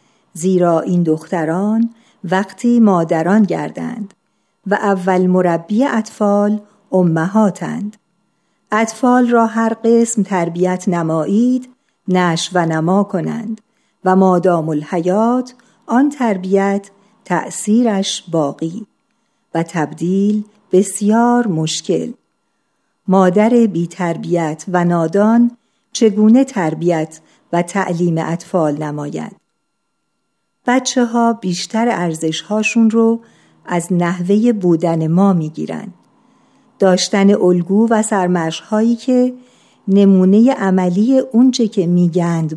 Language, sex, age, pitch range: Persian, female, 50-69, 175-230 Hz